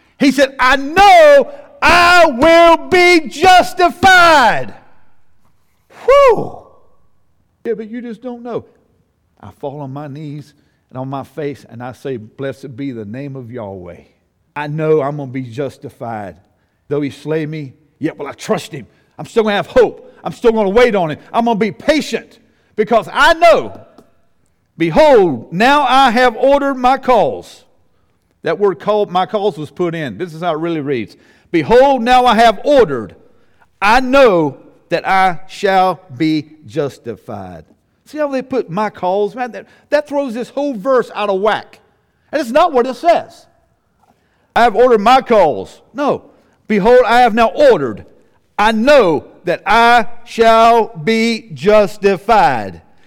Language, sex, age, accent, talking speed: English, male, 50-69, American, 160 wpm